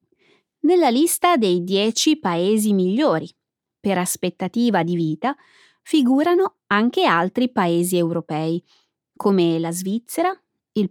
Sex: female